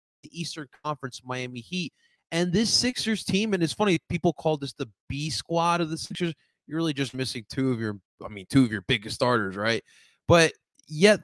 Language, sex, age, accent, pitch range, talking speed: English, male, 30-49, American, 120-170 Hz, 200 wpm